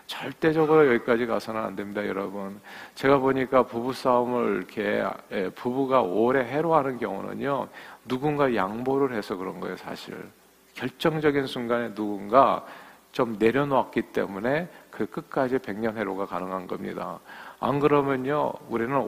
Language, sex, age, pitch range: Korean, male, 50-69, 115-150 Hz